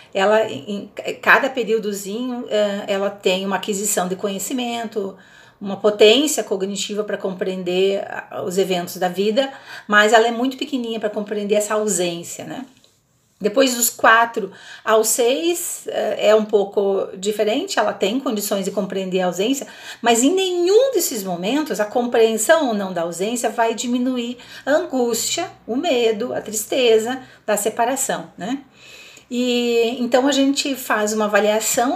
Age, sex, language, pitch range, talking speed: 40-59, female, Portuguese, 205-265 Hz, 135 wpm